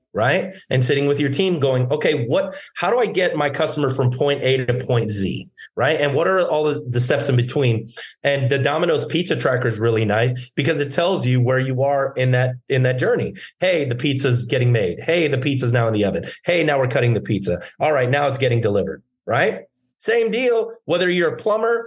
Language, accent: English, American